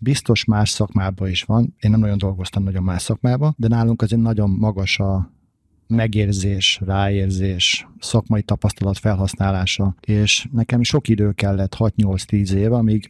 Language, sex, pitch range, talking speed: Hungarian, male, 100-120 Hz, 140 wpm